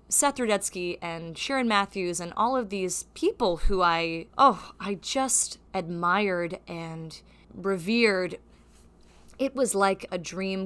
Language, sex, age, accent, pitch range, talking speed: English, female, 20-39, American, 175-215 Hz, 130 wpm